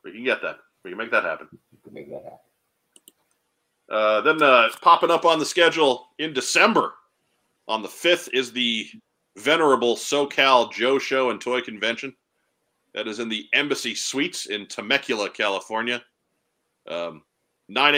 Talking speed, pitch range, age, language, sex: 155 wpm, 110-130 Hz, 40-59, English, male